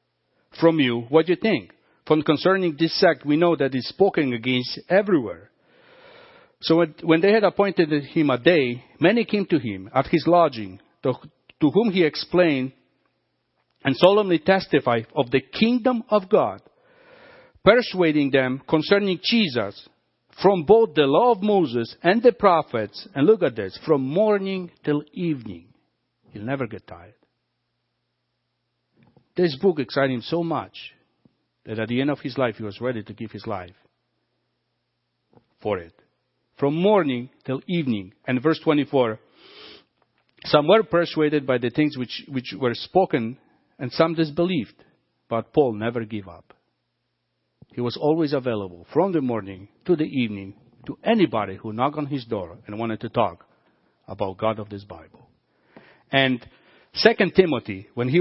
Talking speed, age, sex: 155 wpm, 60-79, male